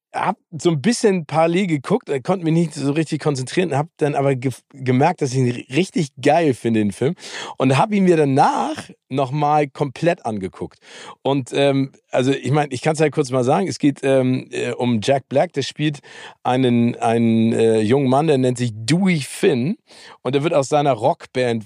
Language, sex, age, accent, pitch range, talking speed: German, male, 40-59, German, 125-150 Hz, 190 wpm